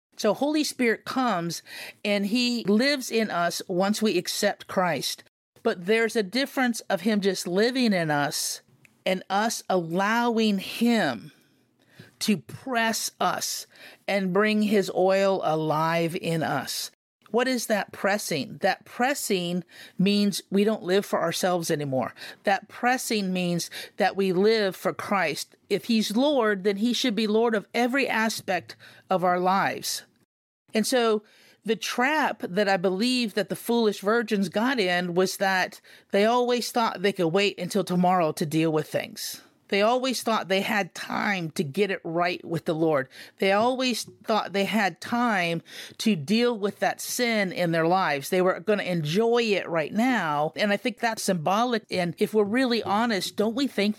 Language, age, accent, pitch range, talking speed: English, 50-69, American, 185-230 Hz, 165 wpm